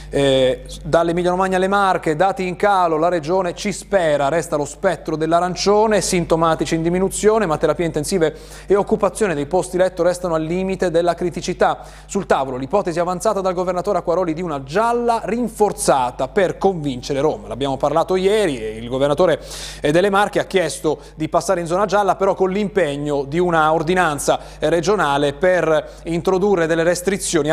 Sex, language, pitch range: male, Italian, 145-185 Hz